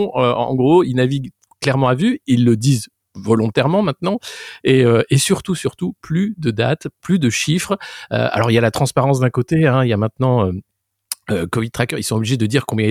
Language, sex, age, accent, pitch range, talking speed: French, male, 50-69, French, 105-145 Hz, 225 wpm